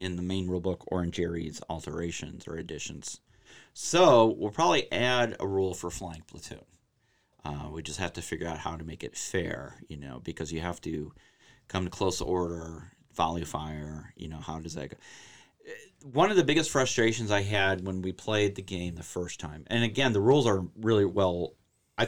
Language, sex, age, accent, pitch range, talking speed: English, male, 40-59, American, 90-125 Hz, 200 wpm